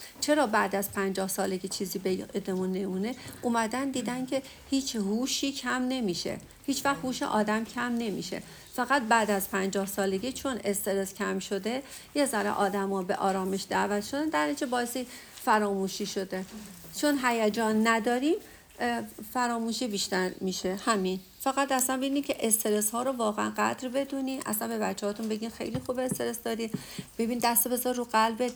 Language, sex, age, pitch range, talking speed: Persian, female, 50-69, 200-250 Hz, 150 wpm